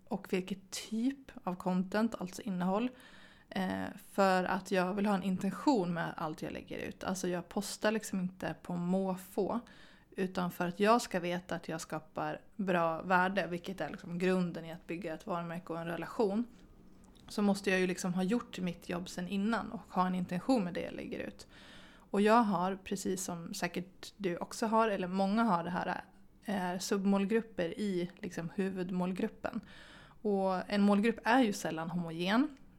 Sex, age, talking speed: female, 20-39, 175 wpm